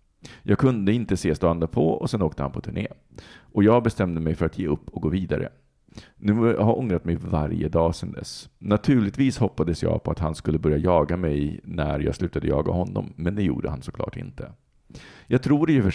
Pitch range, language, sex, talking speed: 80-110 Hz, Swedish, male, 215 wpm